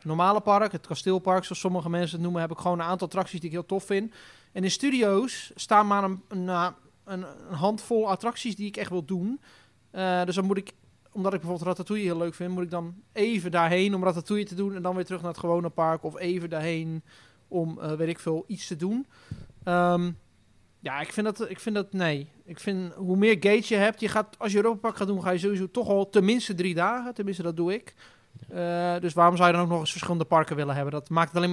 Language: Dutch